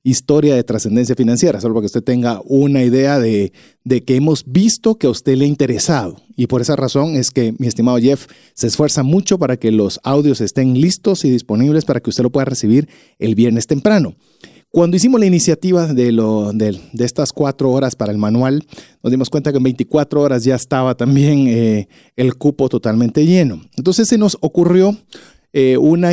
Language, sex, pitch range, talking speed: Spanish, male, 120-165 Hz, 195 wpm